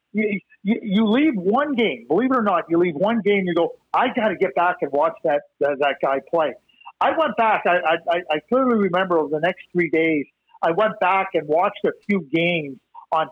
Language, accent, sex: English, American, male